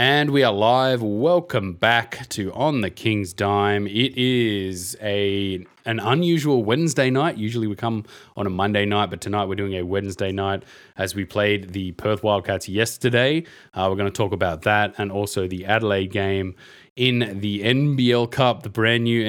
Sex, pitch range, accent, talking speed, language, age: male, 95-110 Hz, Australian, 175 wpm, English, 20-39